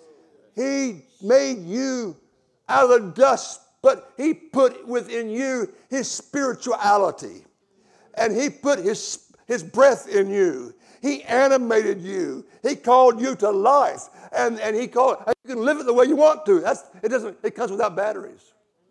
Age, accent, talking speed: 60-79, American, 155 wpm